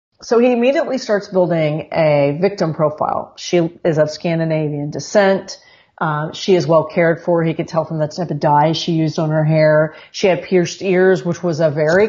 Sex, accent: female, American